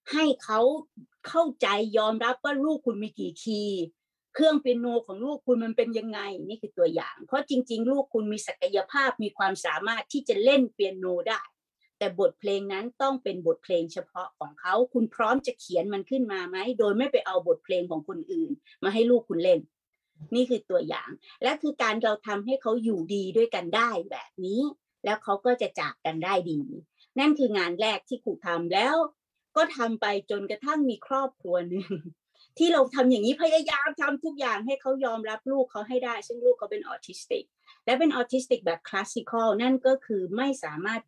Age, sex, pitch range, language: 30-49, female, 190-270 Hz, Thai